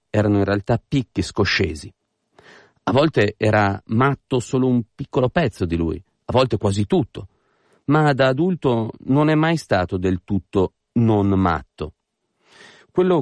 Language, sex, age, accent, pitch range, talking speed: Italian, male, 40-59, native, 95-130 Hz, 140 wpm